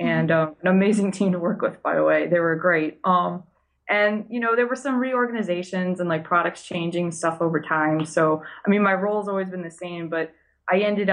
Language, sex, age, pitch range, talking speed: English, female, 20-39, 170-210 Hz, 220 wpm